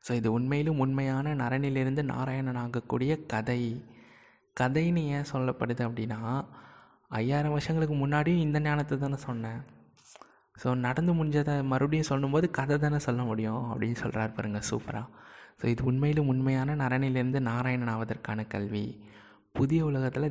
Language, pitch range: Tamil, 115-140 Hz